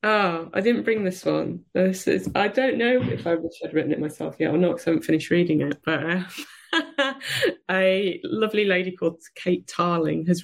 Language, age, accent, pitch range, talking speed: English, 20-39, British, 150-170 Hz, 205 wpm